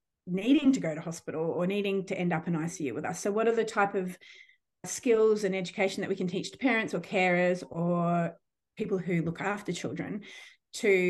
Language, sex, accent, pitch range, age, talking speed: English, female, Australian, 170-200 Hz, 30-49, 205 wpm